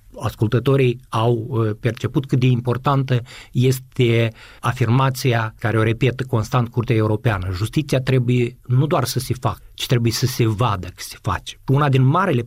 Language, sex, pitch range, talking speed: Romanian, male, 120-150 Hz, 155 wpm